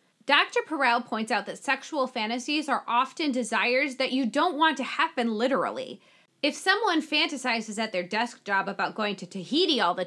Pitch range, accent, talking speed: 220-290 Hz, American, 180 wpm